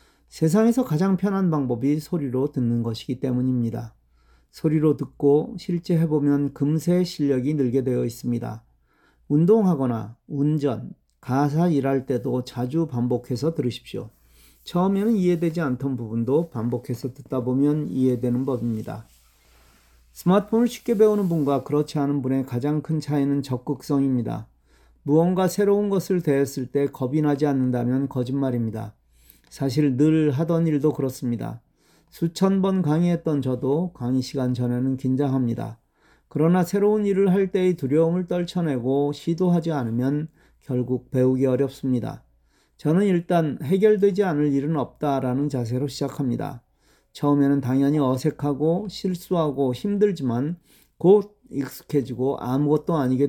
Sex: male